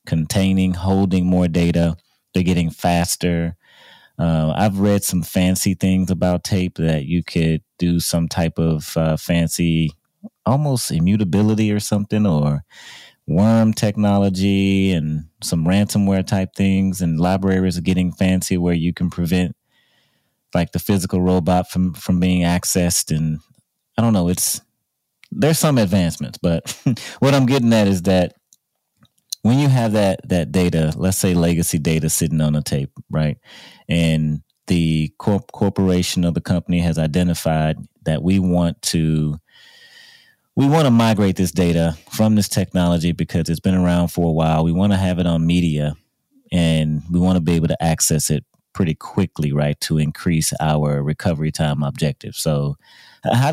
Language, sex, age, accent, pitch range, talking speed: English, male, 30-49, American, 80-95 Hz, 155 wpm